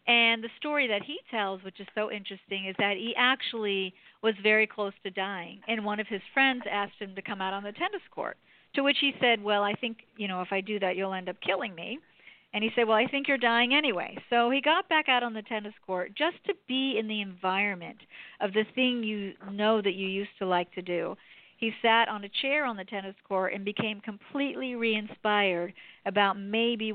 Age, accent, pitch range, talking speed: 50-69, American, 195-235 Hz, 225 wpm